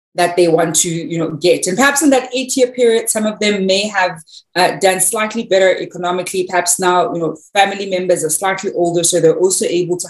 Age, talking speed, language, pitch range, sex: 30-49, 220 wpm, English, 170-210 Hz, female